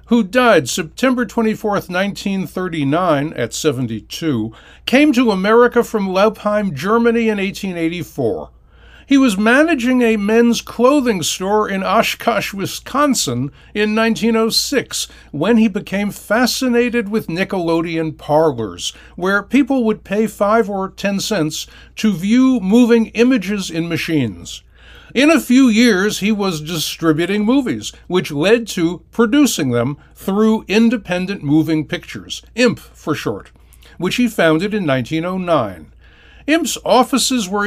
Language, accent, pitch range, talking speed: English, American, 160-230 Hz, 120 wpm